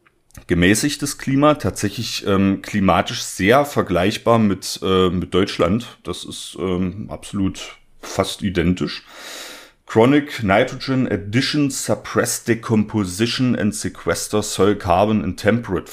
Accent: German